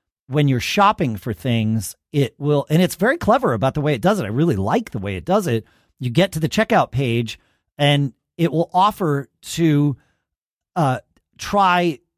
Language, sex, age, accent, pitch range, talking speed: English, male, 40-59, American, 130-180 Hz, 185 wpm